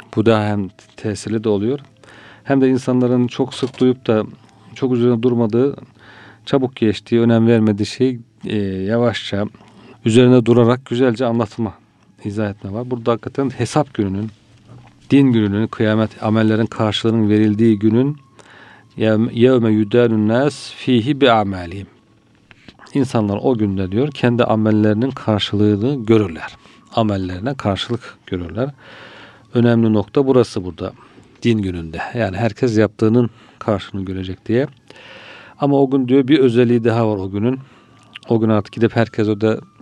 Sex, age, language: male, 40-59, Turkish